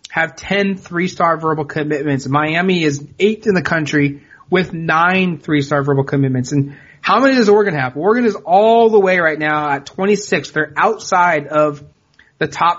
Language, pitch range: English, 145-185 Hz